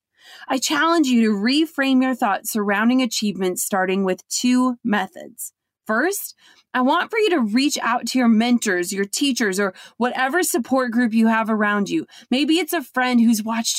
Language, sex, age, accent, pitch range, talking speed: English, female, 30-49, American, 220-275 Hz, 175 wpm